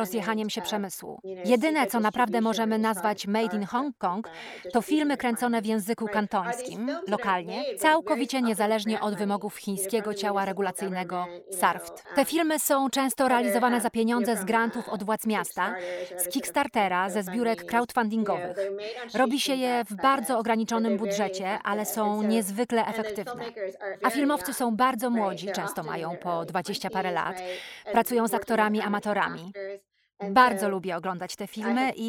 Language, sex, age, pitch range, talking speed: Polish, female, 30-49, 195-235 Hz, 140 wpm